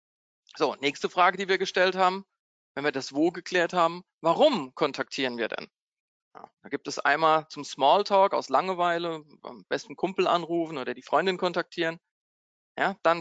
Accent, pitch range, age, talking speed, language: German, 145-190 Hz, 40-59, 165 wpm, German